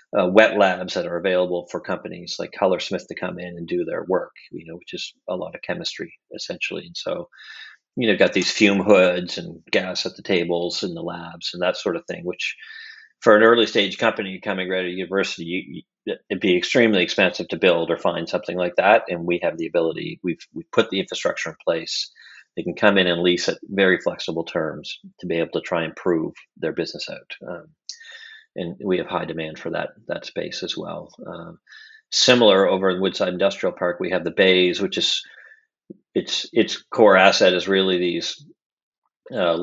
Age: 40-59